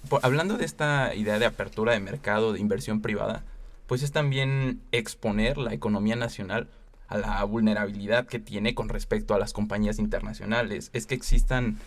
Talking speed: 165 wpm